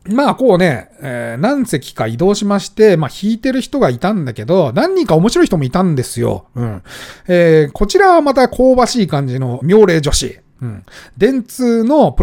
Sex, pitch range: male, 135-220 Hz